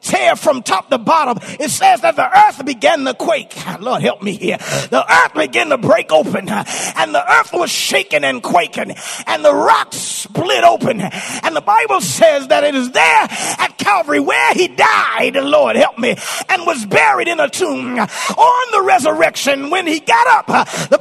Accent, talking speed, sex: American, 185 wpm, male